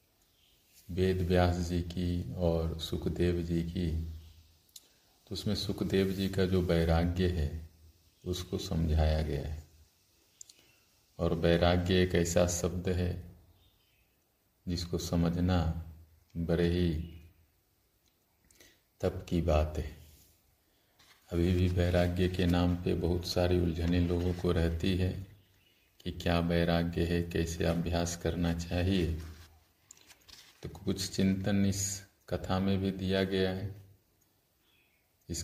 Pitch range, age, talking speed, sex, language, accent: 85-95 Hz, 50-69, 110 wpm, male, Hindi, native